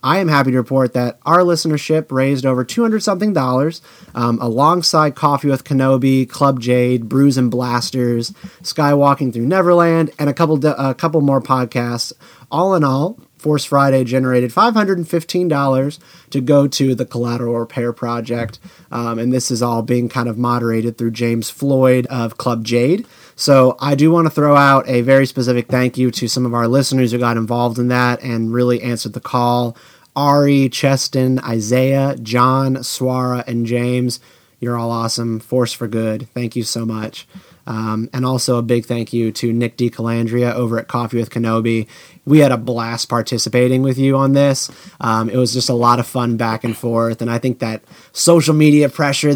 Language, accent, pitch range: English, American, 120-140 Hz